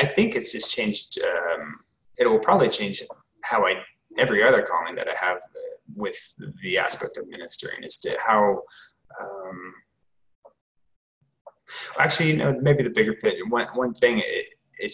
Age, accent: 20-39, American